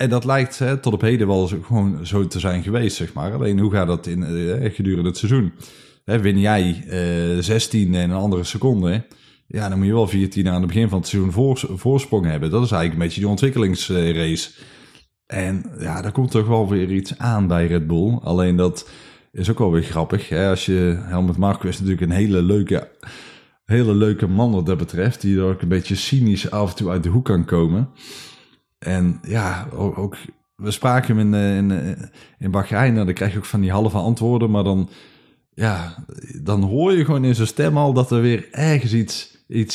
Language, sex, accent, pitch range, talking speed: Dutch, male, Dutch, 95-120 Hz, 215 wpm